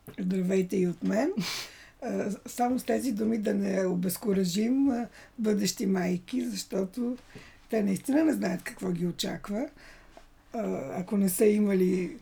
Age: 50-69